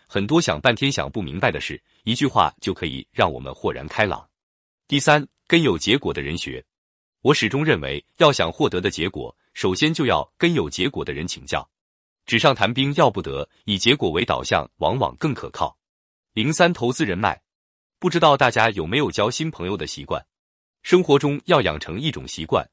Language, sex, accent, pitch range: Chinese, male, native, 90-140 Hz